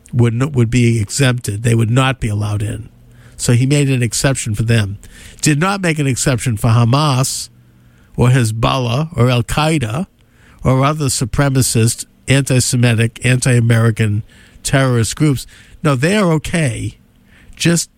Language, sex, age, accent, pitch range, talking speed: English, male, 50-69, American, 110-140 Hz, 130 wpm